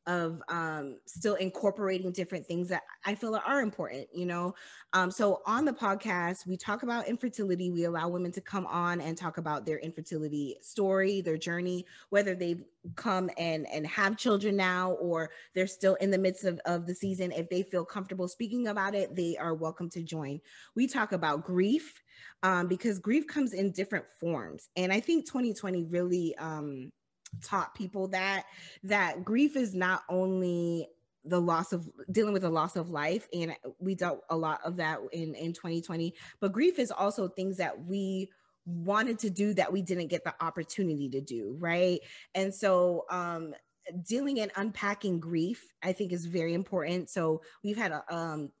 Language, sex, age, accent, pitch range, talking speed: English, female, 20-39, American, 170-195 Hz, 180 wpm